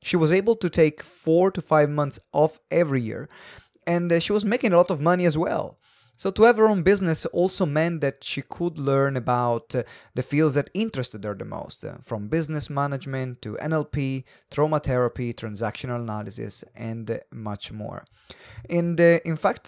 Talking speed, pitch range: 175 wpm, 120-165 Hz